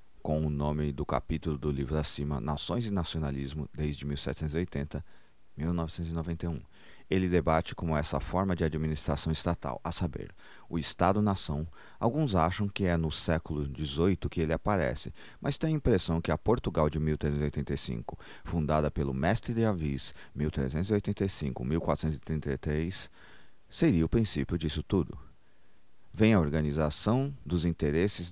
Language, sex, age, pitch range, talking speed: Portuguese, male, 40-59, 75-95 Hz, 130 wpm